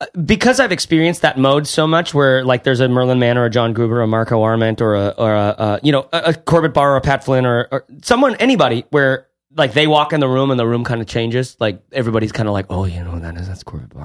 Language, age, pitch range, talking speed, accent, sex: English, 30-49, 115-155 Hz, 290 wpm, American, male